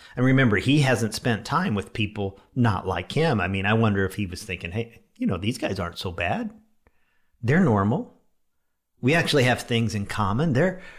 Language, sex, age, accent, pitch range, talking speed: English, male, 50-69, American, 110-155 Hz, 195 wpm